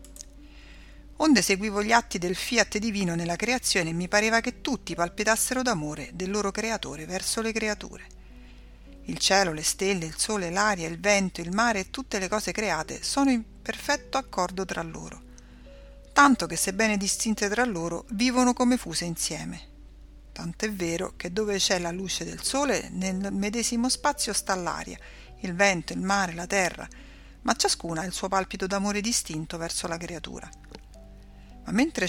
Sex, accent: female, native